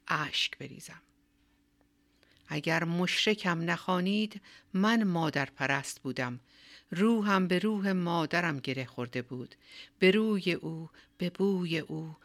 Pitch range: 155-195 Hz